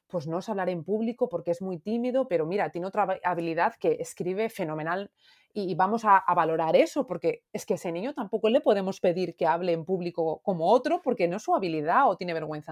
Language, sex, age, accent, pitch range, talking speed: Spanish, female, 30-49, Spanish, 170-240 Hz, 220 wpm